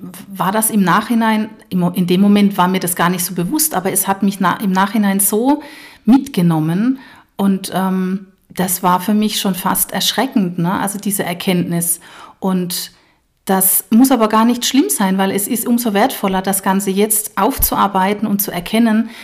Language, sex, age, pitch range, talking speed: German, female, 40-59, 175-215 Hz, 170 wpm